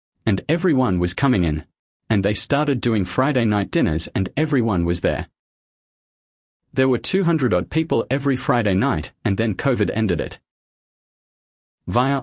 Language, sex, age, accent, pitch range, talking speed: English, male, 40-59, Australian, 90-130 Hz, 140 wpm